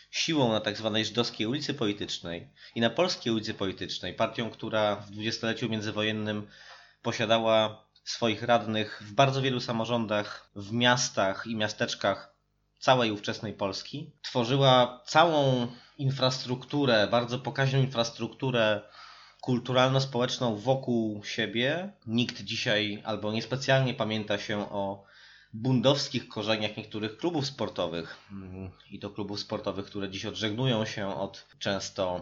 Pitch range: 100-125 Hz